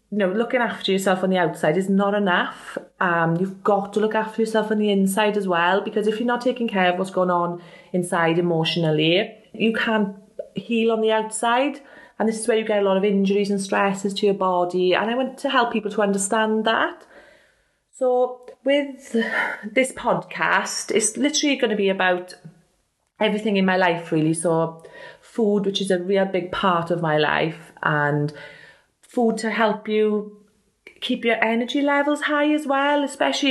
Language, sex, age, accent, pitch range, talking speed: English, female, 30-49, British, 180-225 Hz, 185 wpm